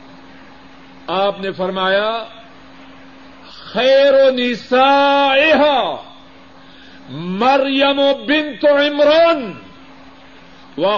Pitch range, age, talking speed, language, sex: 220-290 Hz, 50-69, 60 wpm, Urdu, male